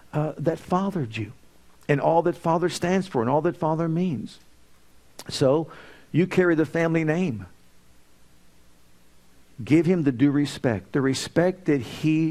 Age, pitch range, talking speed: 50-69, 120-170 Hz, 145 wpm